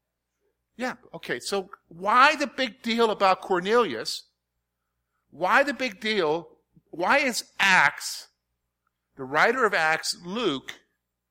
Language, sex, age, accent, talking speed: English, male, 50-69, American, 110 wpm